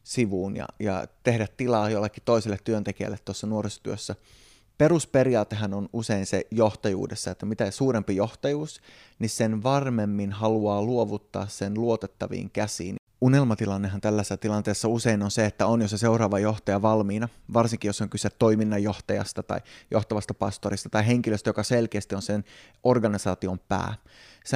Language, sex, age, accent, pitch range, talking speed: Finnish, male, 20-39, native, 105-120 Hz, 140 wpm